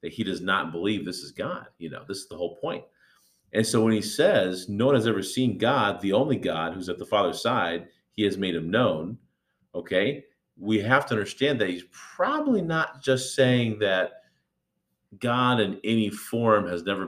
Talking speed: 200 wpm